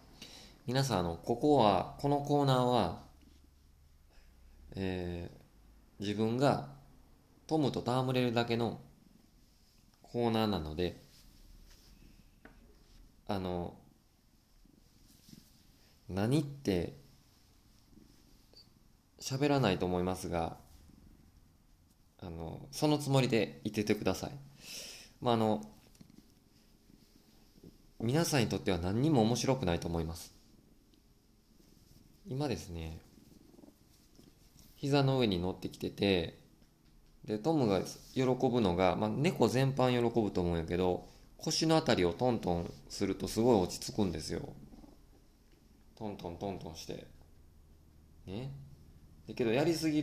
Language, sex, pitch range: Japanese, male, 80-120 Hz